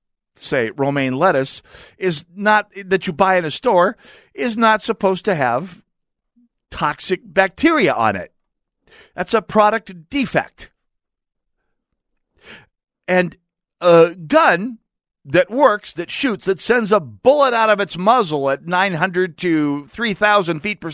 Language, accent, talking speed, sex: English, American, 130 wpm, male